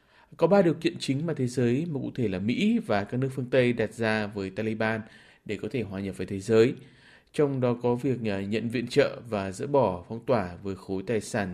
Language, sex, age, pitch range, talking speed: Vietnamese, male, 20-39, 105-130 Hz, 240 wpm